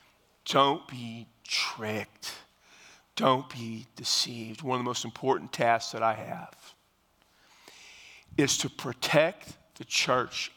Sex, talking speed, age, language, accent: male, 115 wpm, 40-59, English, American